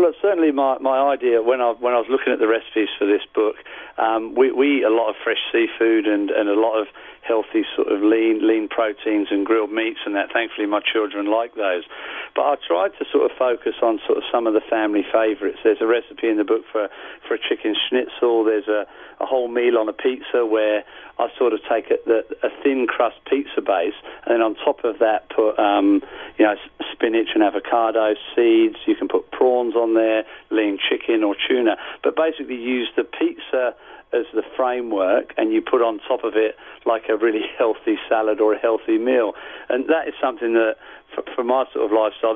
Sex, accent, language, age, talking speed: male, British, English, 40-59, 215 wpm